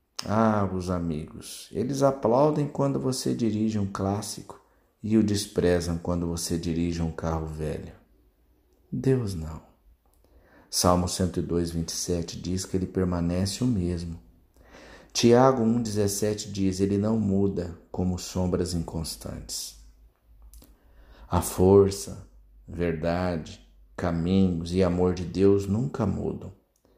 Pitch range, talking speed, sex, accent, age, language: 85-105 Hz, 110 wpm, male, Brazilian, 50-69, Portuguese